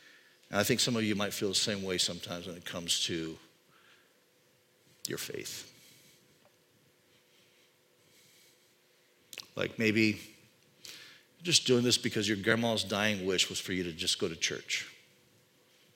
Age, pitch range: 50-69, 105-150 Hz